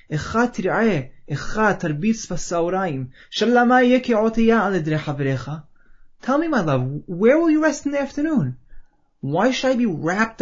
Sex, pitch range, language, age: male, 140-215 Hz, English, 20-39